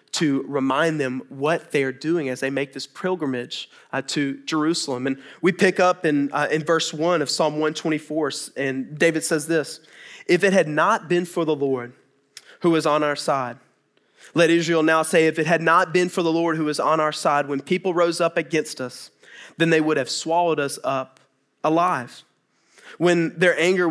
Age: 30-49